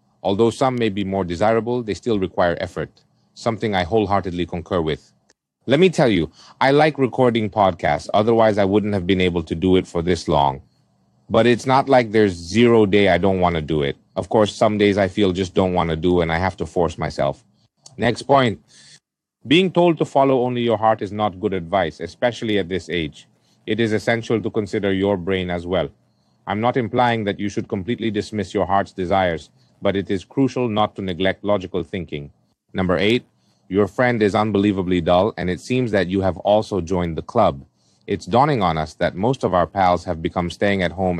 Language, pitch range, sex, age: Thai, 90-115 Hz, male, 30-49